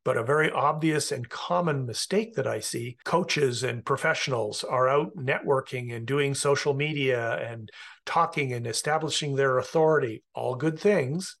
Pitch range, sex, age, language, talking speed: 130-170 Hz, male, 50-69, English, 155 wpm